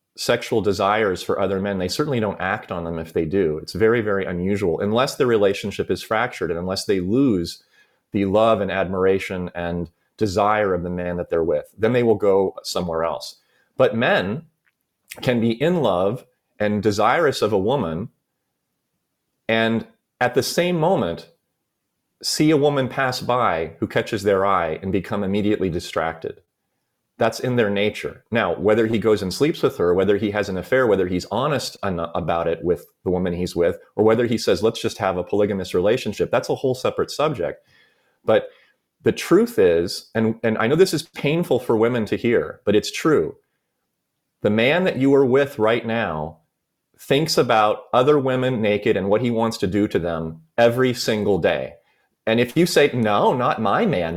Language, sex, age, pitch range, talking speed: English, male, 30-49, 95-135 Hz, 185 wpm